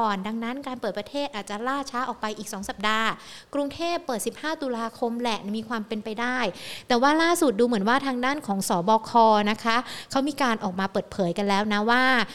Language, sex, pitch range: Thai, female, 200-255 Hz